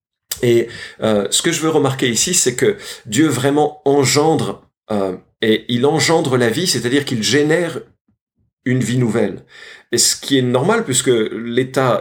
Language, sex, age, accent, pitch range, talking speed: French, male, 40-59, French, 105-140 Hz, 160 wpm